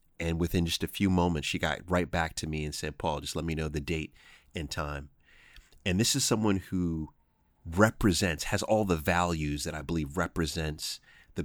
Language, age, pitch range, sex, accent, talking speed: English, 30-49, 75-95 Hz, male, American, 200 wpm